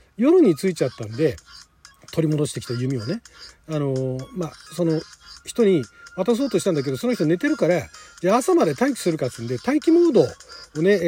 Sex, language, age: male, Japanese, 40-59